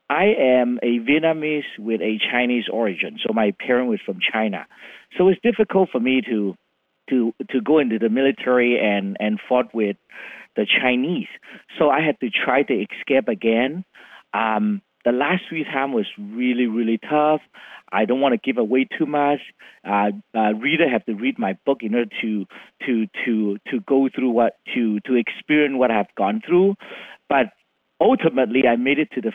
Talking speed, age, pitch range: 180 wpm, 50-69, 115-160 Hz